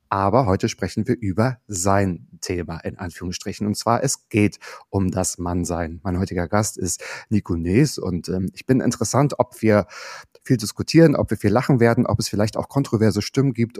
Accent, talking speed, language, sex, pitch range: German, 185 wpm, German, male, 95-115 Hz